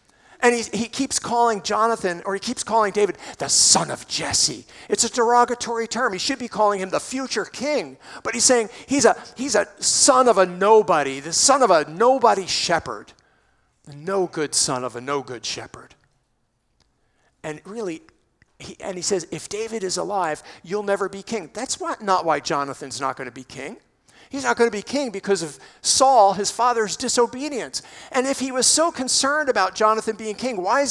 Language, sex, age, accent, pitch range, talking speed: English, male, 50-69, American, 180-250 Hz, 190 wpm